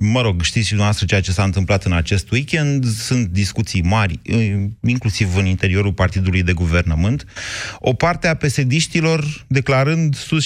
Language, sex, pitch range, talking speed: Romanian, male, 100-130 Hz, 155 wpm